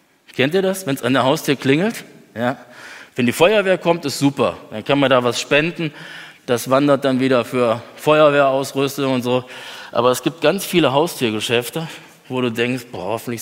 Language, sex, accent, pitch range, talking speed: German, male, German, 120-150 Hz, 185 wpm